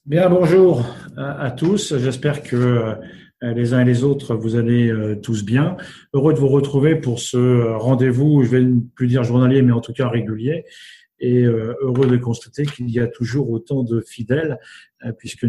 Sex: male